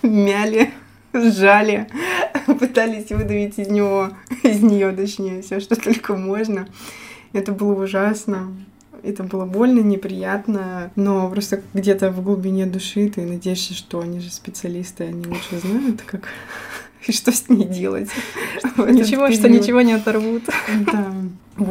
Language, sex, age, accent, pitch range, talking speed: Russian, female, 20-39, native, 180-215 Hz, 130 wpm